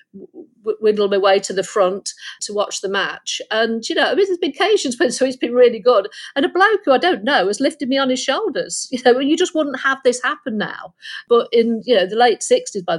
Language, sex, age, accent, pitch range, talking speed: English, female, 50-69, British, 195-245 Hz, 255 wpm